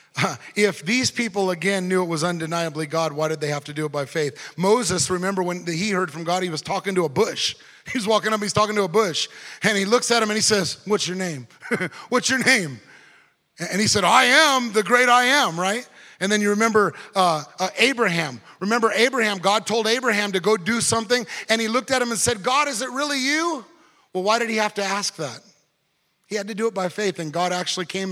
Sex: male